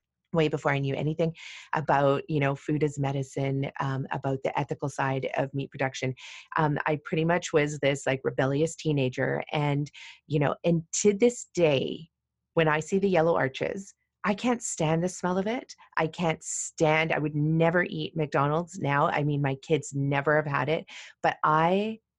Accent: American